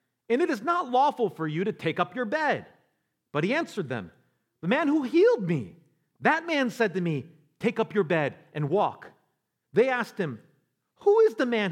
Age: 40-59